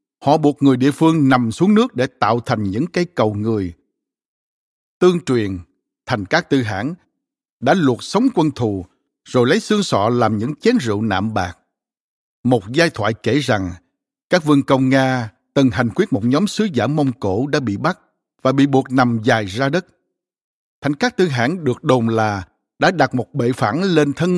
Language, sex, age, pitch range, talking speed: Vietnamese, male, 60-79, 110-150 Hz, 190 wpm